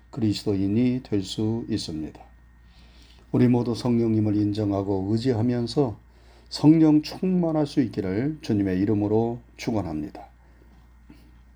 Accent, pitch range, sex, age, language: native, 95-145 Hz, male, 40-59, Korean